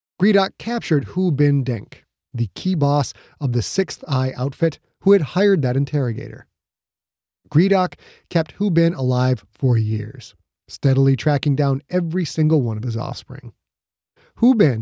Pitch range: 120-160 Hz